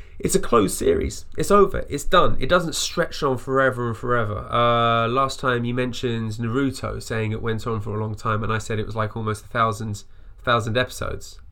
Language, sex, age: English, male, 20-39